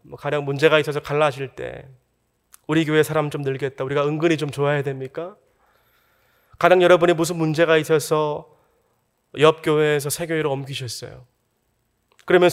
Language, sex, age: Korean, male, 20-39